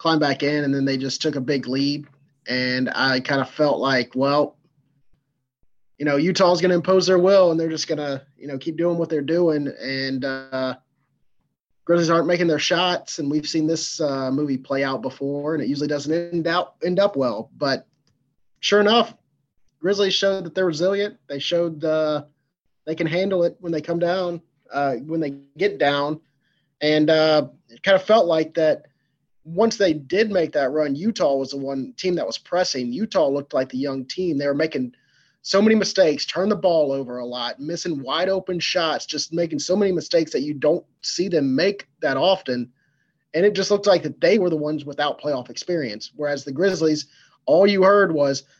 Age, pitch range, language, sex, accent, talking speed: 30-49, 140-175 Hz, English, male, American, 200 wpm